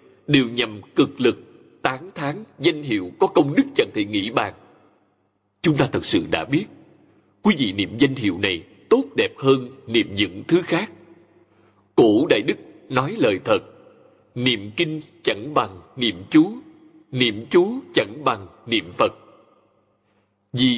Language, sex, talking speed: Vietnamese, male, 155 wpm